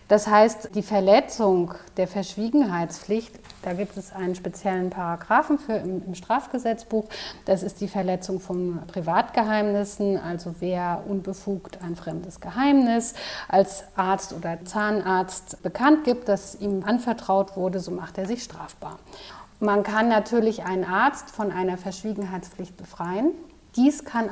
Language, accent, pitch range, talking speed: German, German, 185-220 Hz, 135 wpm